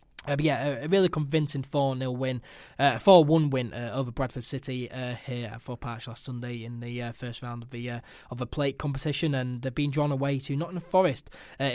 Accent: British